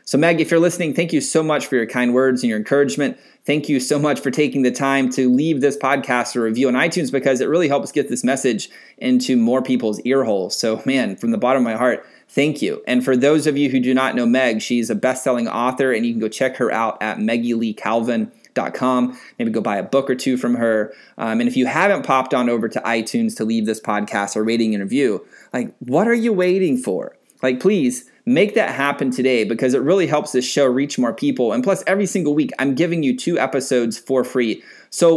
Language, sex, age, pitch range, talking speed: English, male, 20-39, 115-145 Hz, 235 wpm